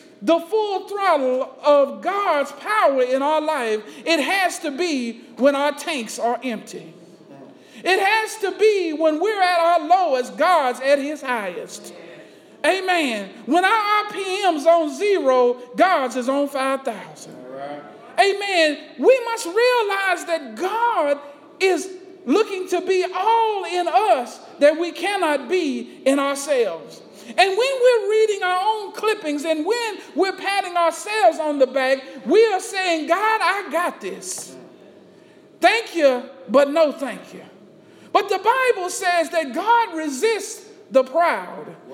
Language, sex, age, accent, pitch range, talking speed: English, male, 50-69, American, 280-380 Hz, 140 wpm